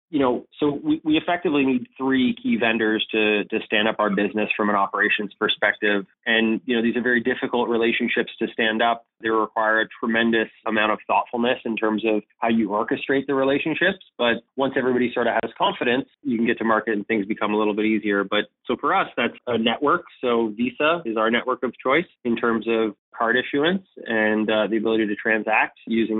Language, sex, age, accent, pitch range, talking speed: English, male, 20-39, American, 110-130 Hz, 210 wpm